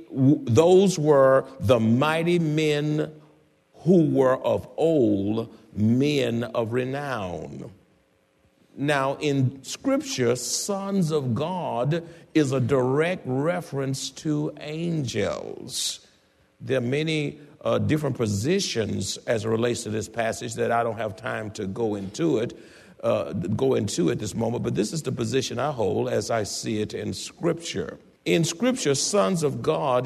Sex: male